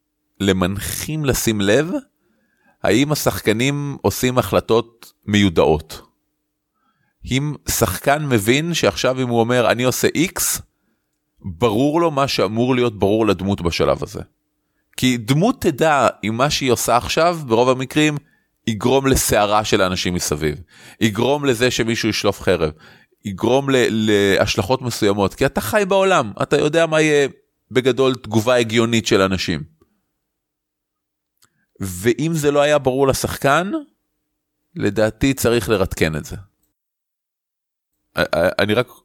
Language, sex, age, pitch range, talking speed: Hebrew, male, 30-49, 100-130 Hz, 120 wpm